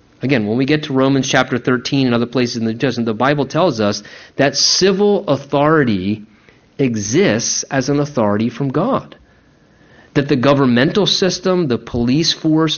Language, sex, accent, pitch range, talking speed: English, male, American, 140-200 Hz, 165 wpm